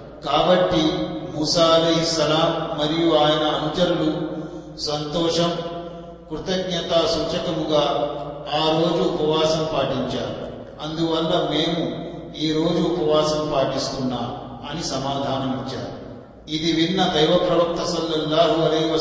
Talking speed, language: 70 wpm, Telugu